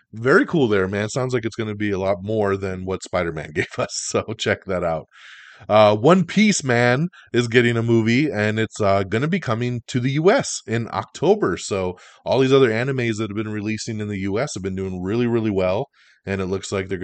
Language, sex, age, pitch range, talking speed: English, male, 20-39, 95-120 Hz, 230 wpm